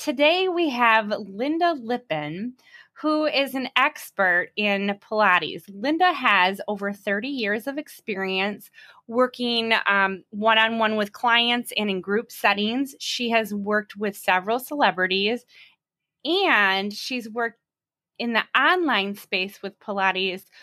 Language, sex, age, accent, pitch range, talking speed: English, female, 20-39, American, 210-295 Hz, 120 wpm